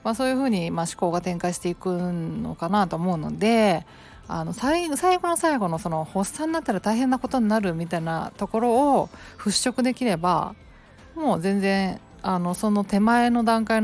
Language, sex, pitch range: Japanese, female, 175-225 Hz